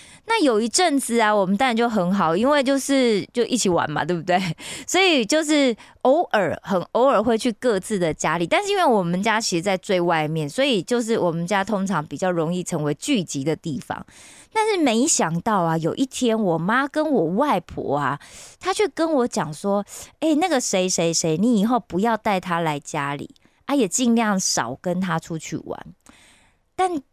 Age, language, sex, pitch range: 20-39, Korean, female, 175-250 Hz